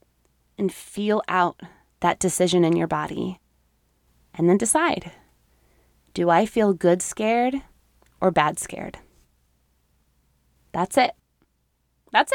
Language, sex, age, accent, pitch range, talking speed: English, female, 20-39, American, 175-265 Hz, 105 wpm